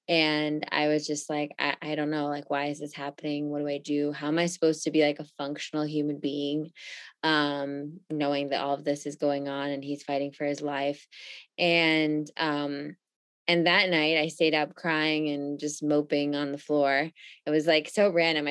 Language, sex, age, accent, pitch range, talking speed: English, female, 20-39, American, 145-165 Hz, 210 wpm